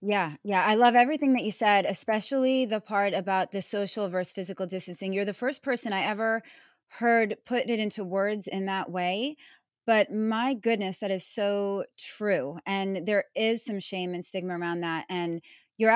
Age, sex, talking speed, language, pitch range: 20-39, female, 185 wpm, English, 185-220 Hz